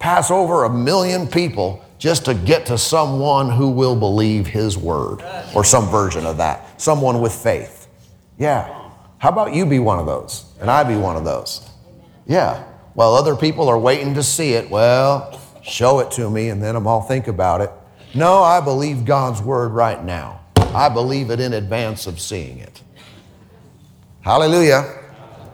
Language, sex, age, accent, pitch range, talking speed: English, male, 40-59, American, 110-140 Hz, 170 wpm